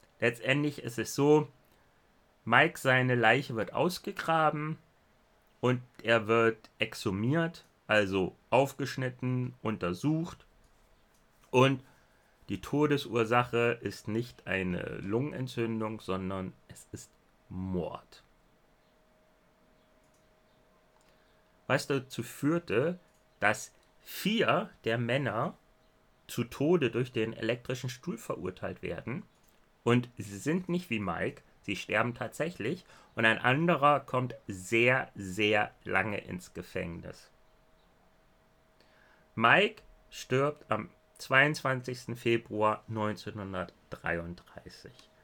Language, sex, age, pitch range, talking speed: German, male, 30-49, 105-135 Hz, 90 wpm